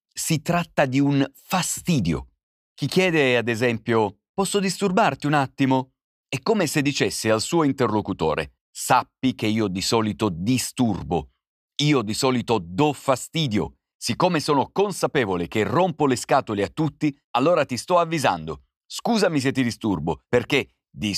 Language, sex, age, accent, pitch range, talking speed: Italian, male, 40-59, native, 105-155 Hz, 140 wpm